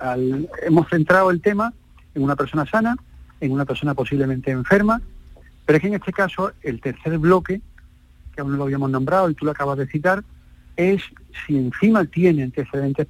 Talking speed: 185 wpm